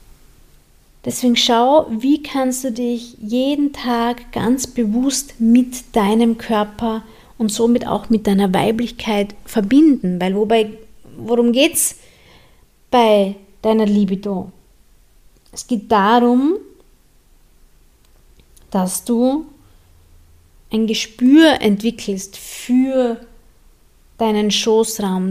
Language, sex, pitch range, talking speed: German, female, 195-240 Hz, 90 wpm